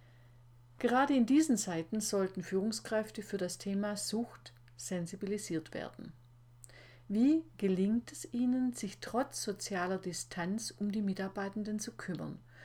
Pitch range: 155-210 Hz